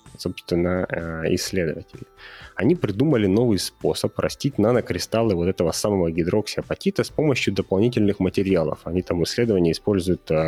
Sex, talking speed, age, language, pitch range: male, 115 wpm, 20-39, Russian, 85-105 Hz